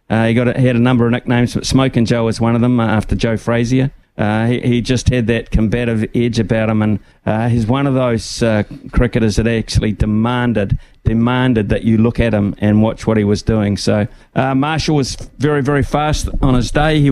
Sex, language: male, English